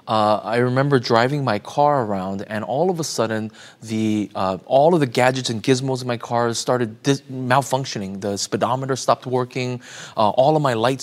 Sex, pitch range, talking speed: male, 115-140 Hz, 180 wpm